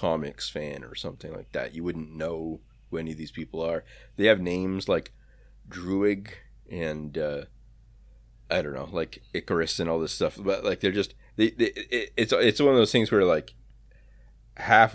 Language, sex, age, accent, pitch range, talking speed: English, male, 30-49, American, 80-100 Hz, 185 wpm